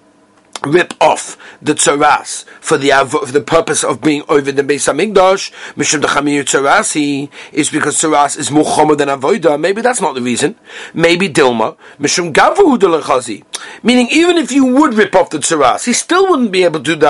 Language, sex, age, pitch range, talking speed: English, male, 40-59, 145-235 Hz, 175 wpm